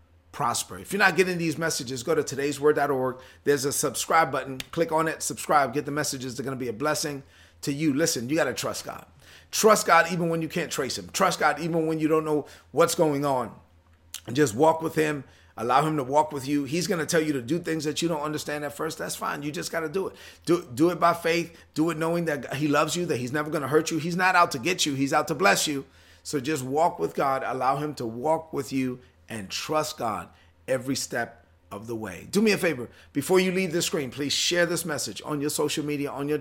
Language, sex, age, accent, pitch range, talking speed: English, male, 30-49, American, 125-160 Hz, 255 wpm